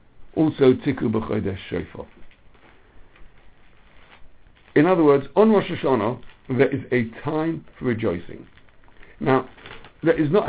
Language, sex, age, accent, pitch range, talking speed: English, male, 60-79, British, 105-145 Hz, 115 wpm